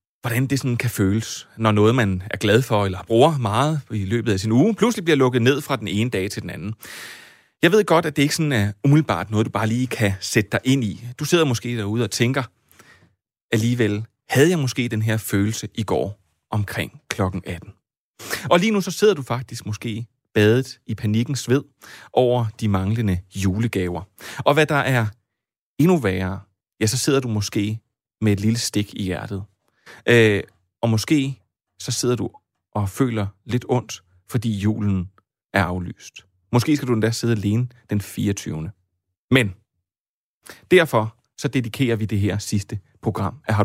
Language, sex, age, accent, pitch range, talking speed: Danish, male, 30-49, native, 100-130 Hz, 180 wpm